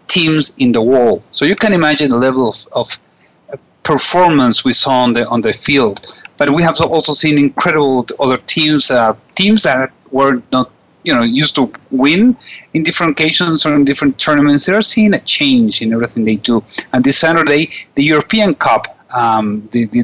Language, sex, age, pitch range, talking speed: English, male, 40-59, 120-160 Hz, 190 wpm